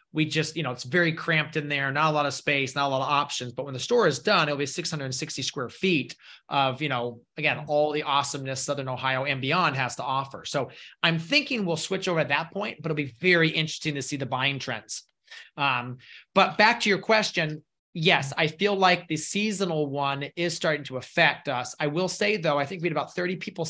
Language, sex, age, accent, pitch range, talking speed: English, male, 30-49, American, 140-170 Hz, 235 wpm